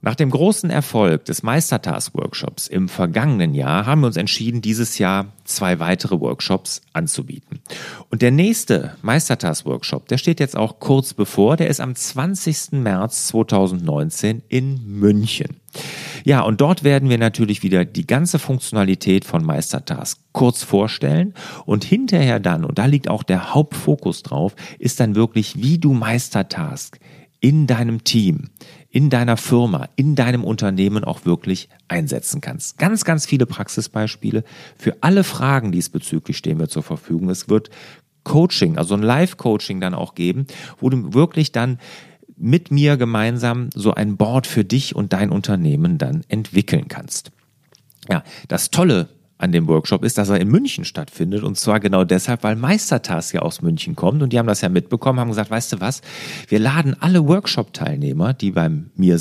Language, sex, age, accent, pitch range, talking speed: German, male, 40-59, German, 105-150 Hz, 160 wpm